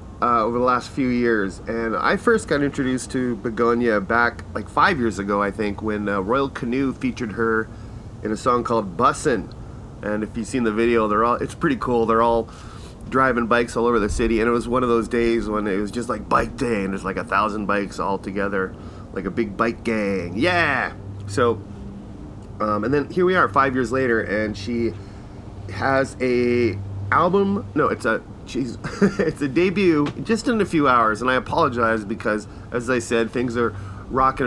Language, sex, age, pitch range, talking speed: English, male, 30-49, 105-130 Hz, 200 wpm